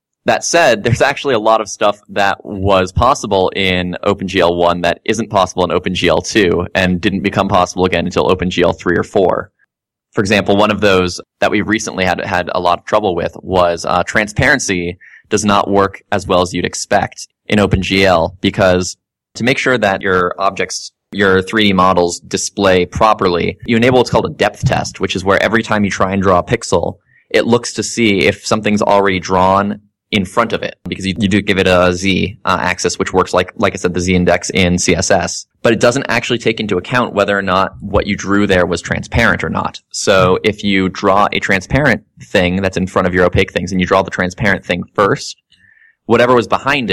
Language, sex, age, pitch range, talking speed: English, male, 20-39, 90-105 Hz, 205 wpm